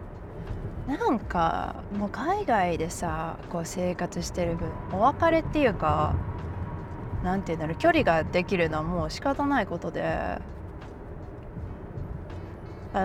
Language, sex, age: Japanese, female, 20-39